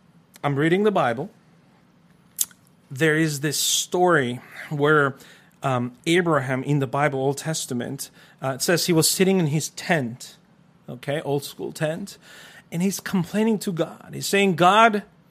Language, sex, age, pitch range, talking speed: English, male, 40-59, 155-200 Hz, 145 wpm